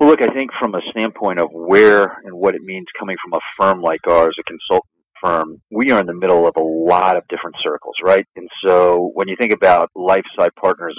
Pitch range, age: 90-110 Hz, 40-59